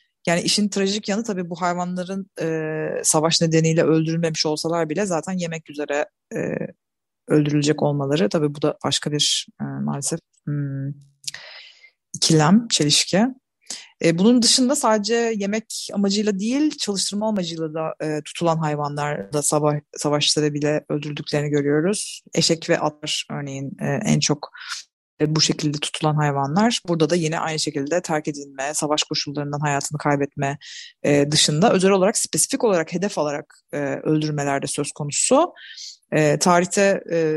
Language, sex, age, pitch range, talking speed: Turkish, female, 30-49, 150-180 Hz, 130 wpm